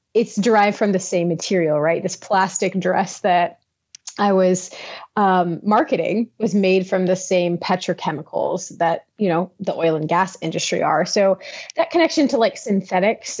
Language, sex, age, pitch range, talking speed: English, female, 30-49, 175-205 Hz, 160 wpm